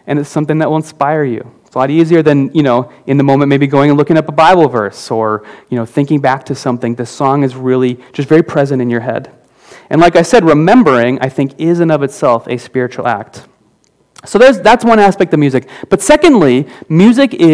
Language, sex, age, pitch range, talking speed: English, male, 30-49, 135-175 Hz, 225 wpm